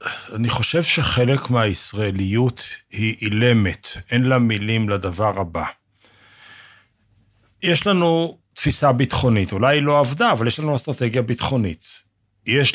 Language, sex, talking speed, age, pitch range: Hebrew, male, 120 wpm, 50-69, 105-140 Hz